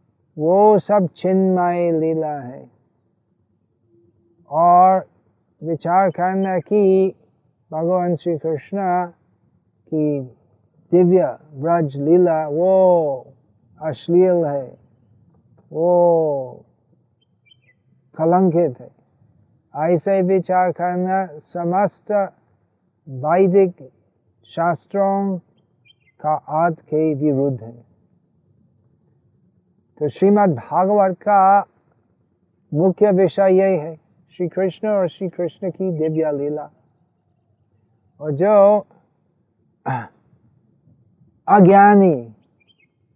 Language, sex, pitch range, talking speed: Hindi, male, 140-185 Hz, 70 wpm